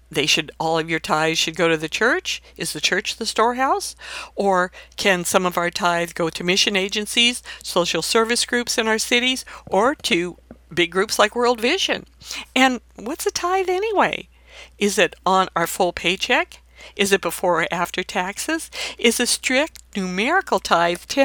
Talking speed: 170 wpm